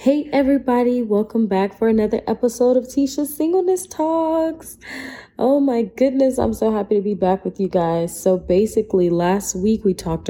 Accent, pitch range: American, 160-210 Hz